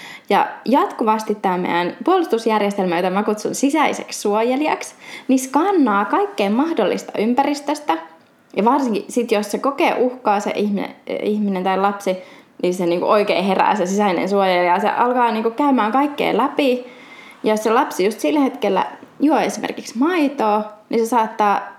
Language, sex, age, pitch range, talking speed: Finnish, female, 20-39, 205-275 Hz, 155 wpm